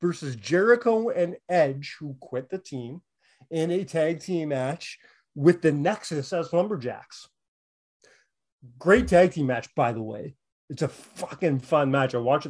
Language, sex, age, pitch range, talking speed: English, male, 30-49, 135-175 Hz, 155 wpm